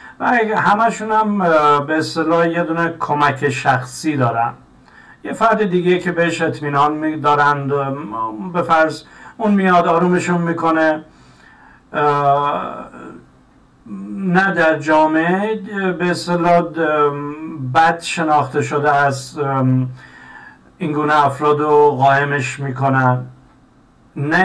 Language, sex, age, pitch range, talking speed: Persian, male, 50-69, 135-170 Hz, 95 wpm